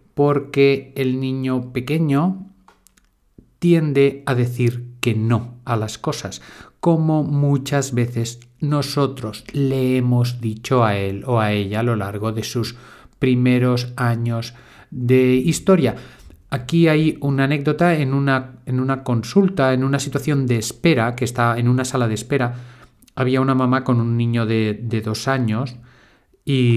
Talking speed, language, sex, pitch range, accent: 145 wpm, Spanish, male, 115-135 Hz, Spanish